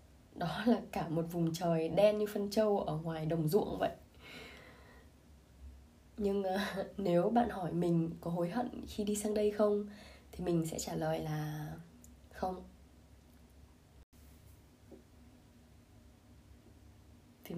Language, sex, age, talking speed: Vietnamese, female, 20-39, 125 wpm